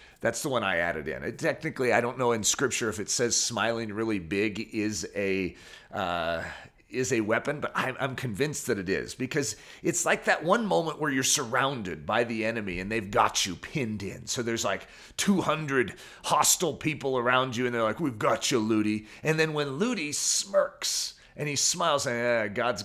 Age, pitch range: 40-59, 115-170 Hz